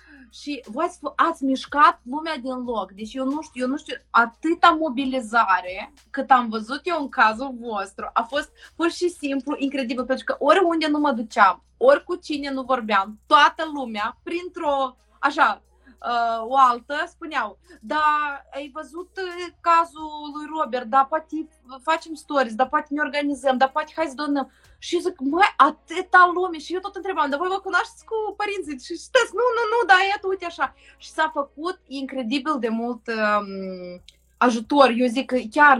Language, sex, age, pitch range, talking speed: Romanian, female, 20-39, 245-315 Hz, 170 wpm